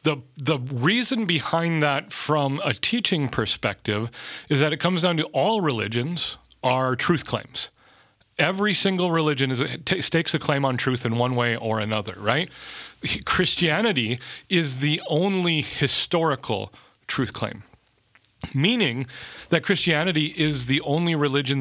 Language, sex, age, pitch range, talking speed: English, male, 40-59, 125-165 Hz, 140 wpm